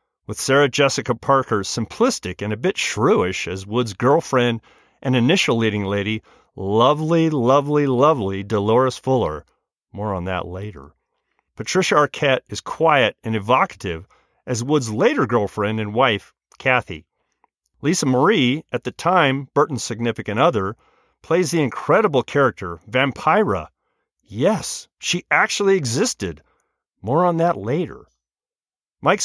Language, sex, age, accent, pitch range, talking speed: English, male, 40-59, American, 110-150 Hz, 125 wpm